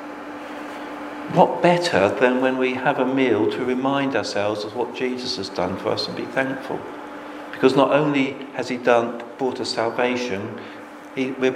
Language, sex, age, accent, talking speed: English, male, 50-69, British, 160 wpm